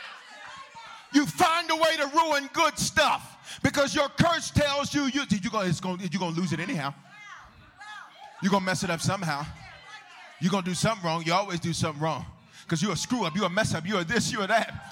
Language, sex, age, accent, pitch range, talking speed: English, male, 40-59, American, 215-315 Hz, 205 wpm